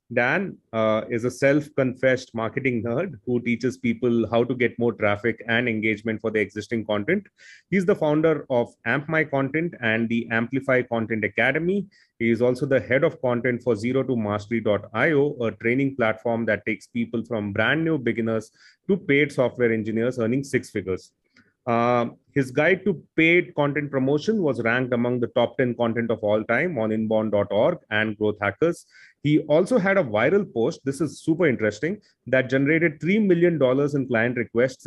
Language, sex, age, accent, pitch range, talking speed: English, male, 30-49, Indian, 115-140 Hz, 170 wpm